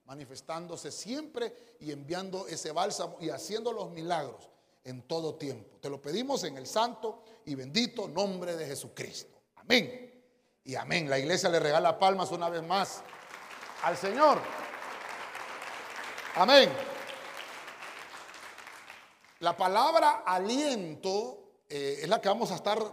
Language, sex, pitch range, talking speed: Spanish, male, 170-235 Hz, 125 wpm